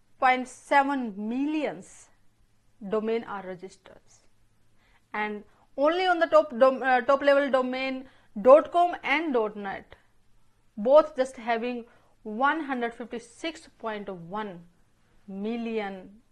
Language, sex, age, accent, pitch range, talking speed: English, female, 30-49, Indian, 210-300 Hz, 85 wpm